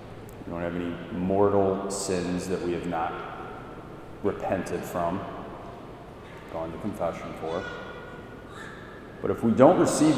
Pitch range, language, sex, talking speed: 95-125 Hz, English, male, 125 wpm